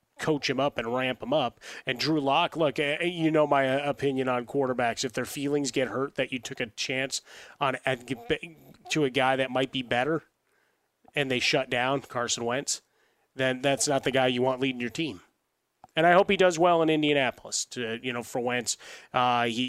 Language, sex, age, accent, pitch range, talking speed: English, male, 30-49, American, 125-140 Hz, 200 wpm